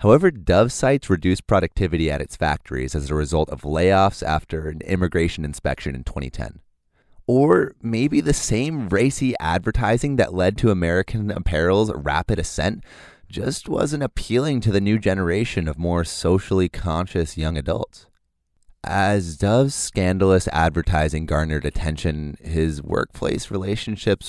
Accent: American